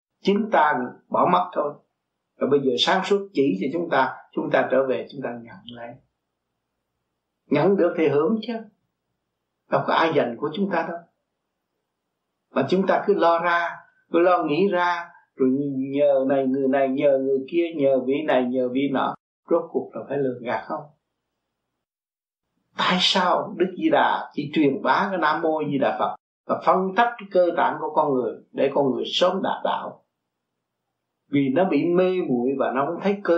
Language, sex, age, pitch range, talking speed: Vietnamese, male, 60-79, 130-185 Hz, 190 wpm